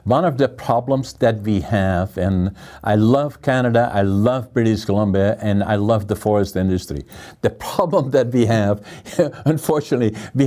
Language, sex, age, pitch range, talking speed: English, male, 60-79, 105-125 Hz, 160 wpm